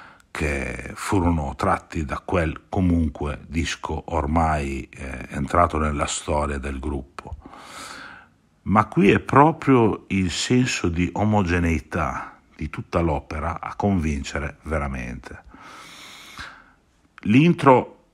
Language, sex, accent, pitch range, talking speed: Italian, male, native, 75-100 Hz, 95 wpm